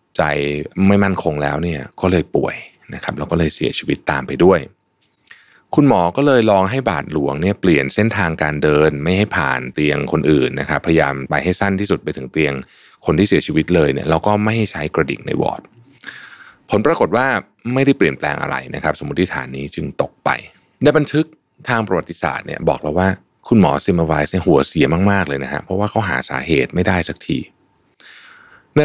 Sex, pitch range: male, 75-100 Hz